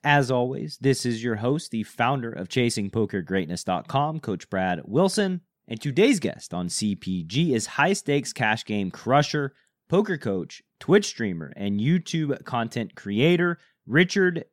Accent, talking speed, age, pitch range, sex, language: American, 130 wpm, 30-49, 120-175 Hz, male, English